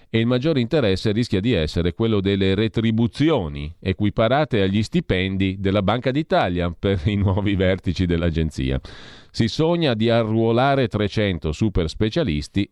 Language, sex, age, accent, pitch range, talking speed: Italian, male, 40-59, native, 85-120 Hz, 130 wpm